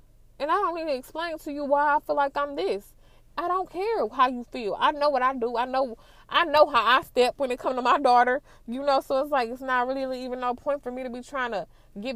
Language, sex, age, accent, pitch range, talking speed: English, female, 20-39, American, 205-260 Hz, 275 wpm